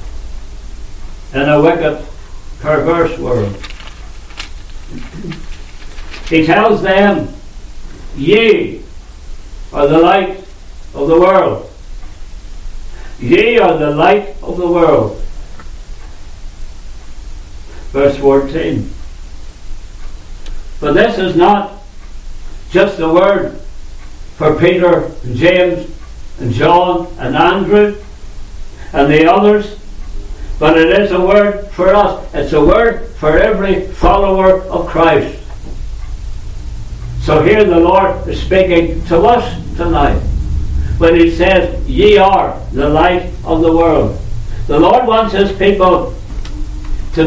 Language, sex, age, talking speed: English, male, 60-79, 105 wpm